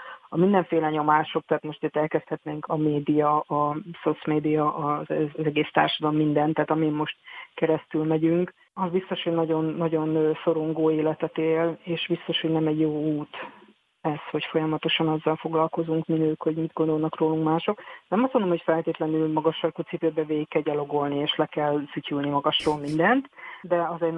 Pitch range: 155-165 Hz